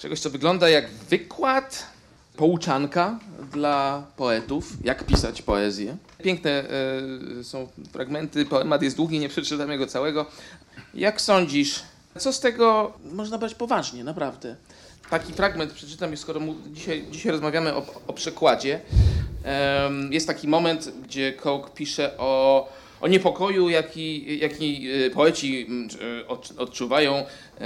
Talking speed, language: 115 wpm, Polish